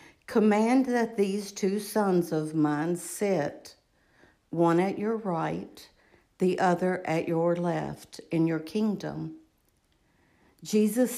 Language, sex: English, female